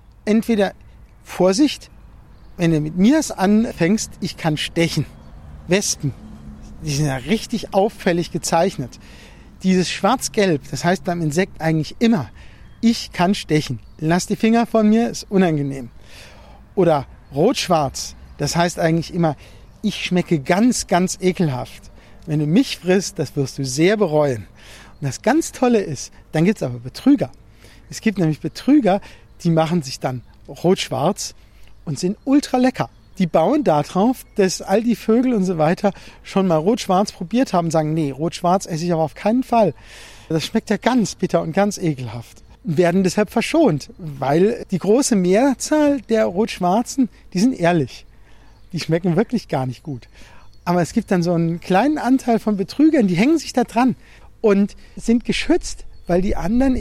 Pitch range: 140-215 Hz